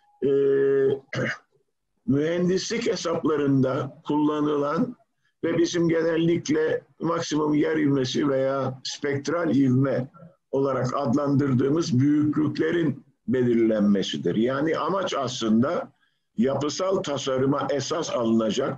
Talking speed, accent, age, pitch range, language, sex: 75 wpm, native, 50-69, 135-175 Hz, Turkish, male